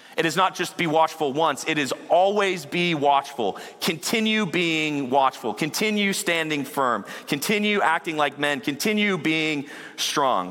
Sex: male